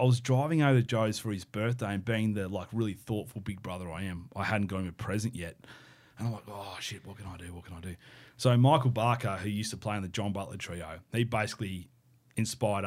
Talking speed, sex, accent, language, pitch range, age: 250 wpm, male, Australian, English, 95-120 Hz, 30-49